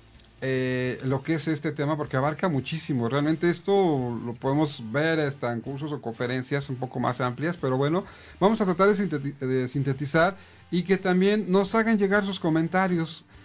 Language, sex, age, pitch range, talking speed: Spanish, male, 50-69, 140-190 Hz, 170 wpm